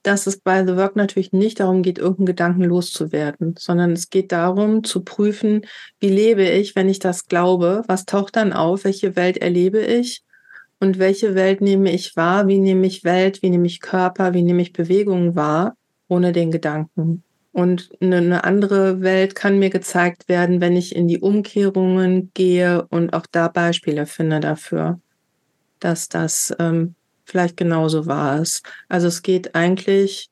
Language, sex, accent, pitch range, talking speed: German, female, German, 170-190 Hz, 170 wpm